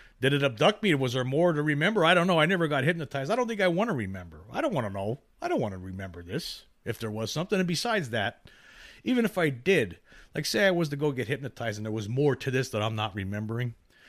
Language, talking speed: English, 270 wpm